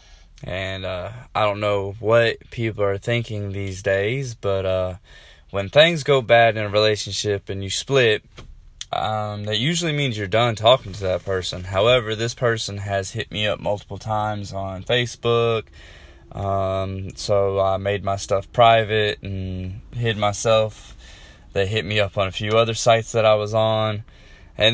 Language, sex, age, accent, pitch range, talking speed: English, male, 20-39, American, 95-115 Hz, 165 wpm